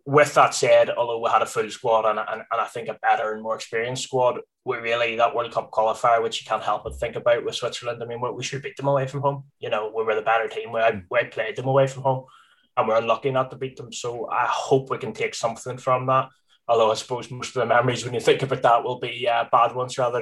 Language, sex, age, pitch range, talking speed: English, male, 10-29, 115-145 Hz, 275 wpm